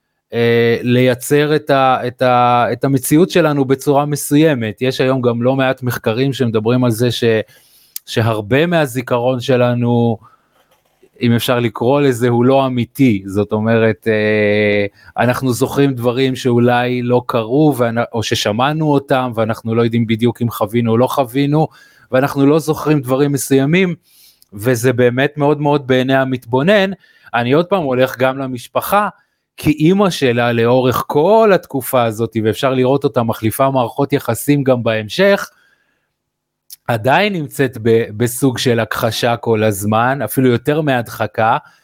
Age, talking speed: 20-39, 140 wpm